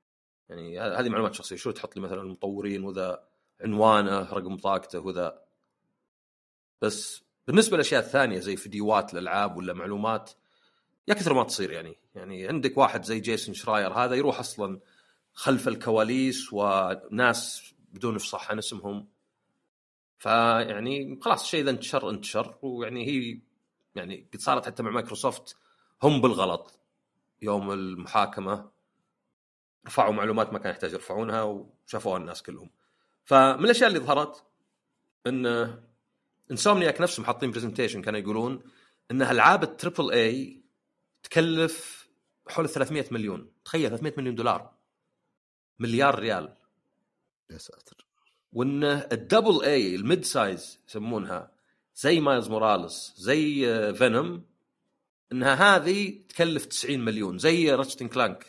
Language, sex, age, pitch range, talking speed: Arabic, male, 40-59, 100-140 Hz, 120 wpm